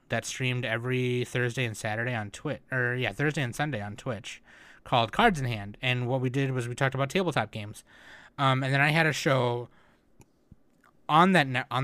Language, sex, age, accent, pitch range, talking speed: English, male, 20-39, American, 110-135 Hz, 205 wpm